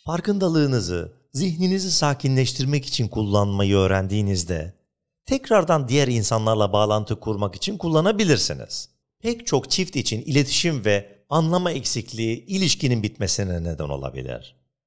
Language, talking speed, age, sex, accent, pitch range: Turkish, 100 wpm, 50-69, male, native, 105-155 Hz